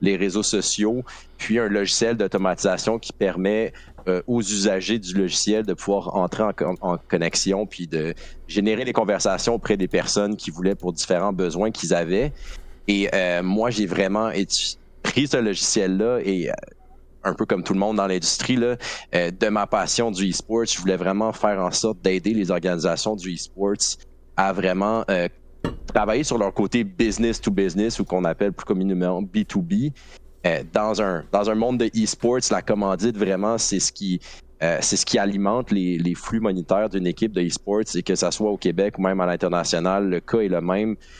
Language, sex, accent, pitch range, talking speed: French, male, Canadian, 90-110 Hz, 190 wpm